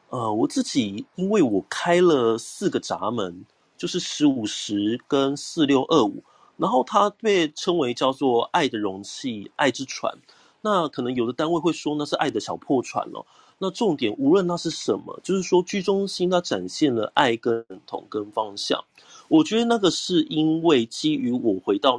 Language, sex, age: Chinese, male, 30-49